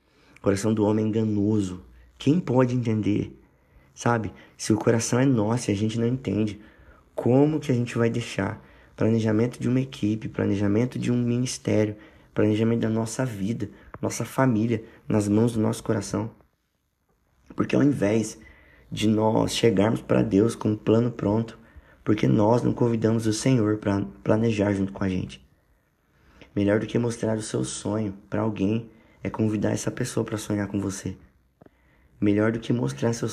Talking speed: 160 wpm